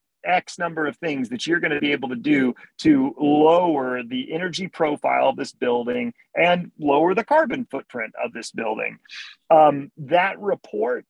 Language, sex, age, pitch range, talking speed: English, male, 40-59, 155-210 Hz, 170 wpm